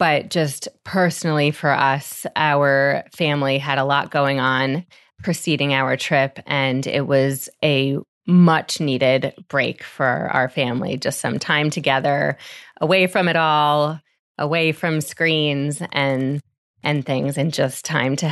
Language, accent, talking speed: English, American, 140 wpm